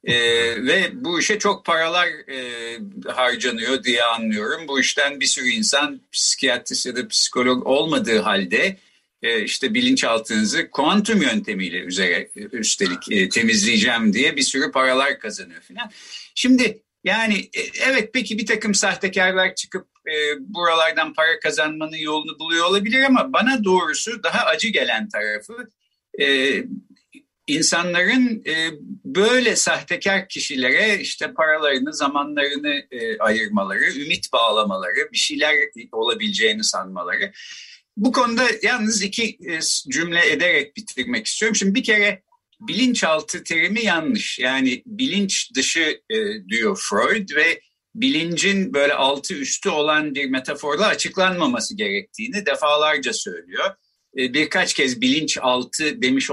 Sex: male